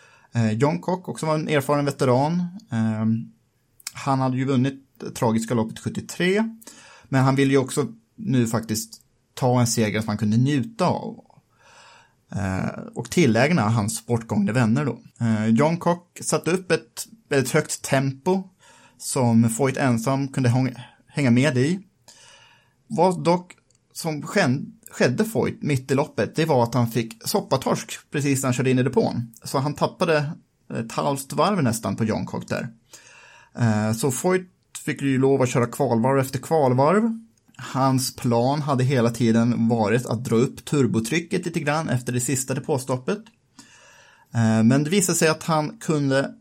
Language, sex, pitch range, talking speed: Swedish, male, 115-155 Hz, 155 wpm